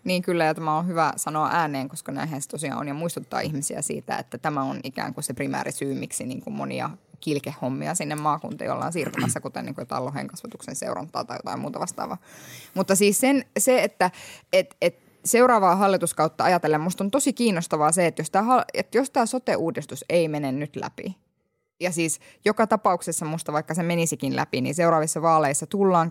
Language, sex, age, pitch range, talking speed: Finnish, female, 10-29, 150-205 Hz, 185 wpm